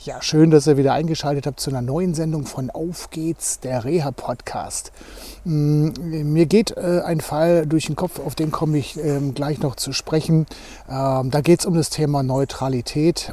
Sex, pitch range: male, 135-160 Hz